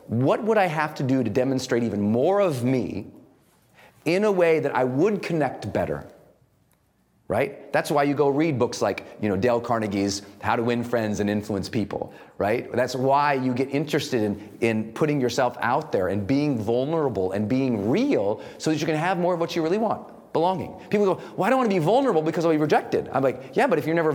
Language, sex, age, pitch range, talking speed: English, male, 40-59, 115-165 Hz, 220 wpm